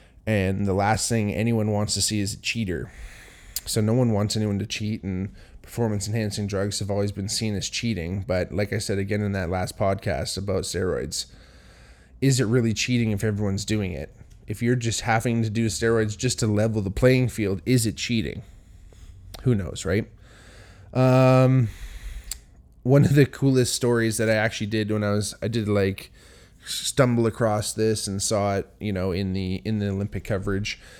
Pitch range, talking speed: 100-115 Hz, 185 wpm